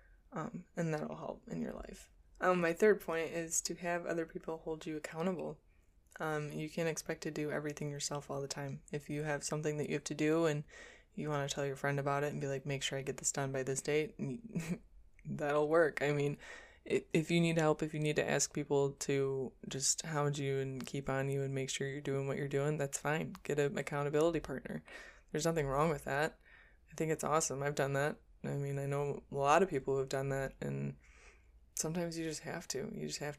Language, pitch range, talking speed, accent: English, 140-160 Hz, 230 wpm, American